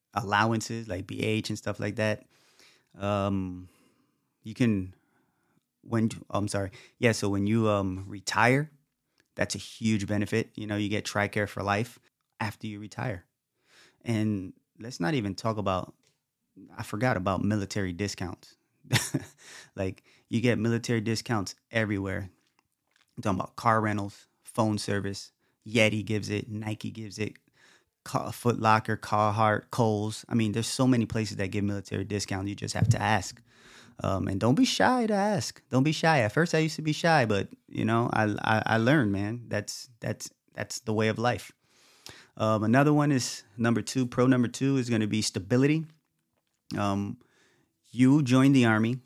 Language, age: English, 20-39